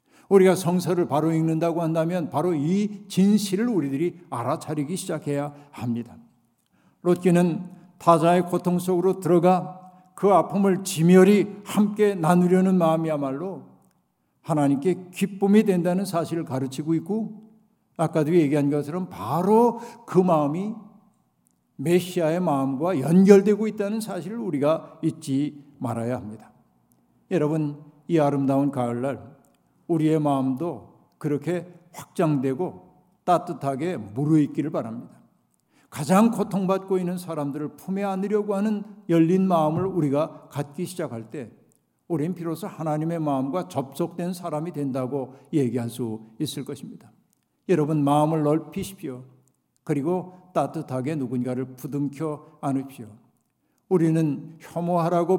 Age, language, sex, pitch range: 60-79, Korean, male, 140-180 Hz